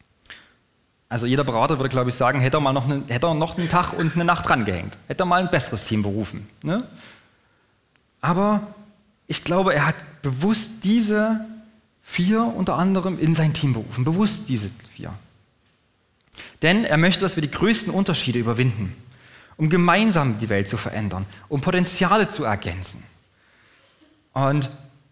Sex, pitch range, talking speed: male, 125-190 Hz, 160 wpm